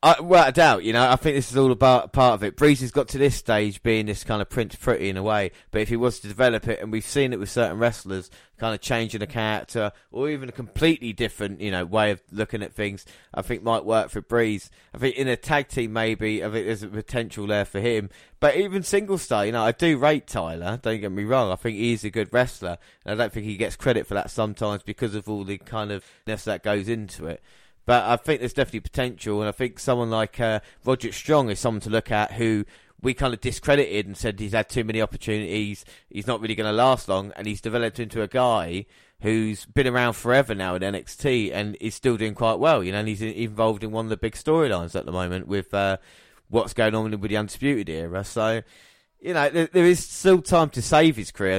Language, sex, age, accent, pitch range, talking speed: English, male, 20-39, British, 105-125 Hz, 250 wpm